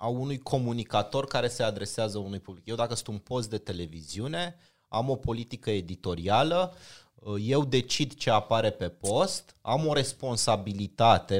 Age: 30-49